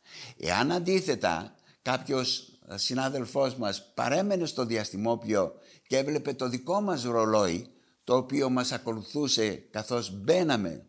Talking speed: 110 wpm